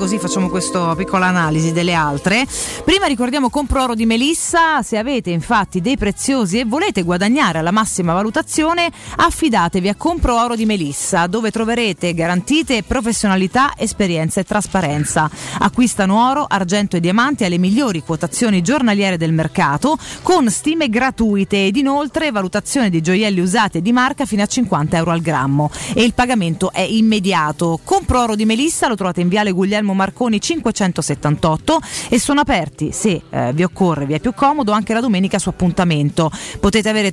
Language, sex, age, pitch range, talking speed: Italian, female, 30-49, 175-250 Hz, 160 wpm